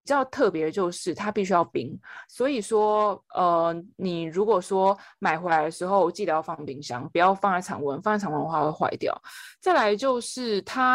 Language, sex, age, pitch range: Chinese, female, 20-39, 175-265 Hz